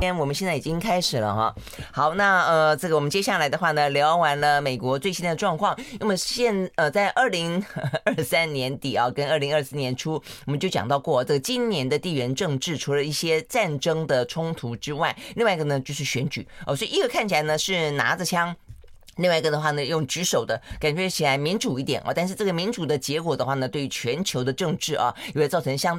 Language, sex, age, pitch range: Chinese, female, 20-39, 140-195 Hz